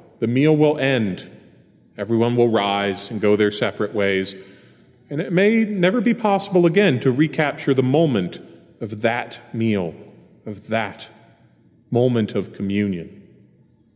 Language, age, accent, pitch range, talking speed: English, 40-59, American, 120-185 Hz, 135 wpm